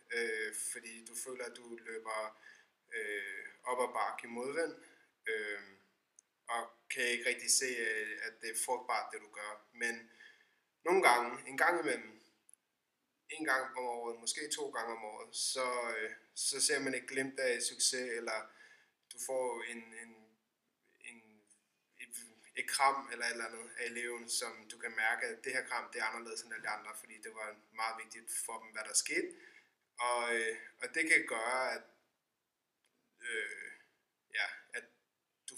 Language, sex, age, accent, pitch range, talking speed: Danish, male, 20-39, native, 115-150 Hz, 165 wpm